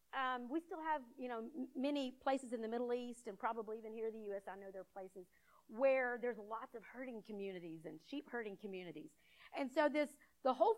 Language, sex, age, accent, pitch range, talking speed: English, female, 40-59, American, 210-295 Hz, 215 wpm